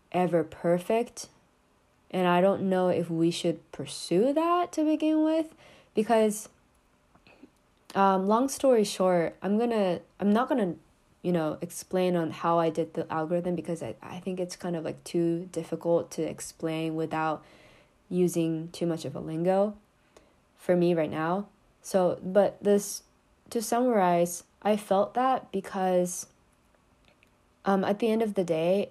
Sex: female